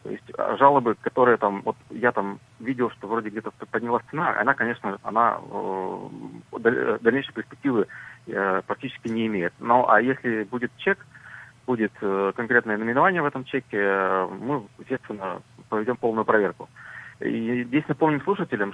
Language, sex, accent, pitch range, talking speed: Russian, male, native, 105-130 Hz, 140 wpm